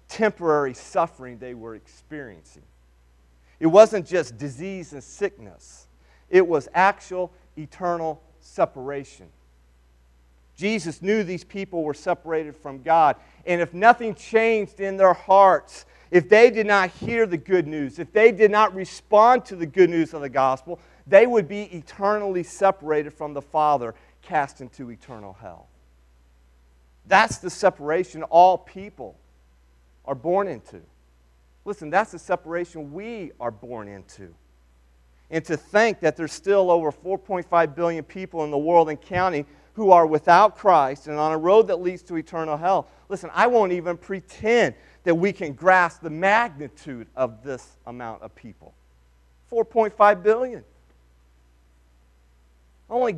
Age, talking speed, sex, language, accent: 40-59, 140 wpm, male, English, American